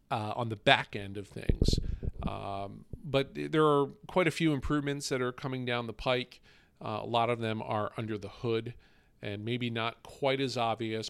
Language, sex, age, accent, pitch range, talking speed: English, male, 40-59, American, 105-125 Hz, 195 wpm